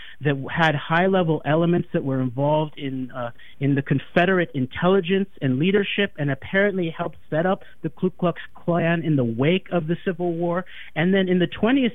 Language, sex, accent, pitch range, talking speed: English, male, American, 145-185 Hz, 180 wpm